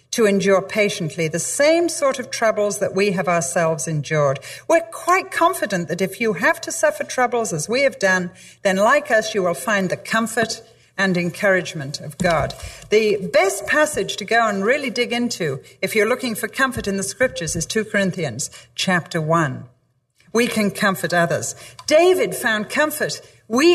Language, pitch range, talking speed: English, 170-240 Hz, 175 wpm